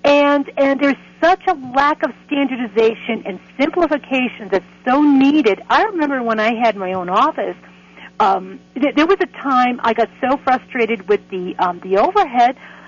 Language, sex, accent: English, female, American